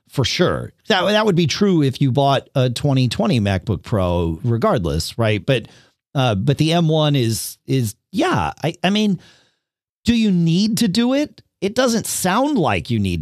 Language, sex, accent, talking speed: English, male, American, 175 wpm